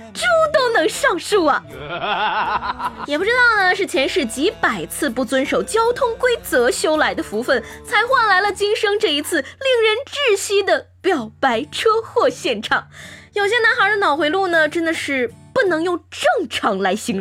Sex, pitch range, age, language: female, 285-445 Hz, 20-39, Chinese